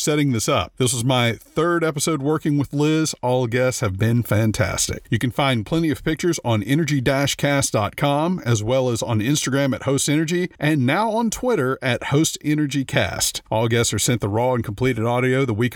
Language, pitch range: English, 120-155 Hz